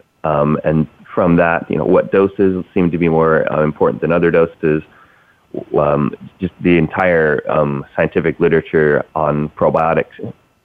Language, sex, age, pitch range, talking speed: English, male, 30-49, 75-80 Hz, 145 wpm